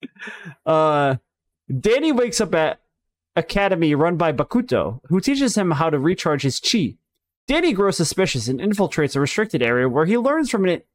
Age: 30-49